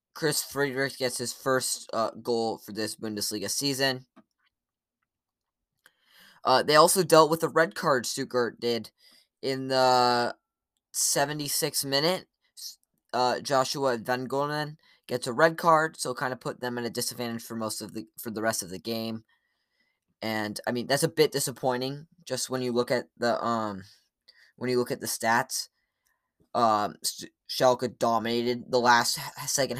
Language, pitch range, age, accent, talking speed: English, 115-145 Hz, 10-29, American, 155 wpm